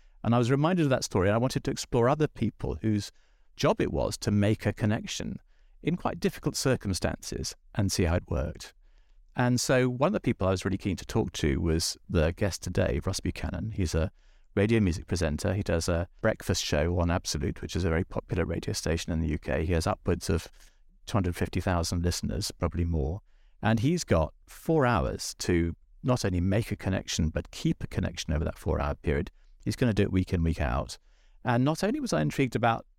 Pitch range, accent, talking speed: 85-115 Hz, British, 210 wpm